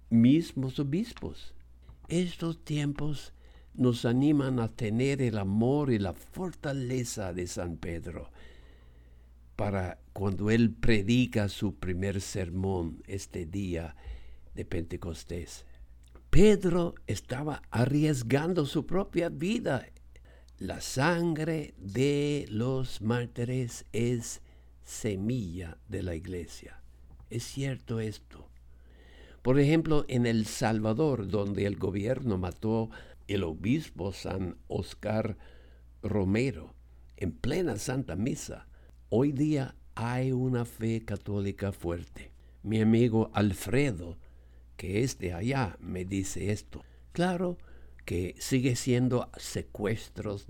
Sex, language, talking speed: male, English, 100 wpm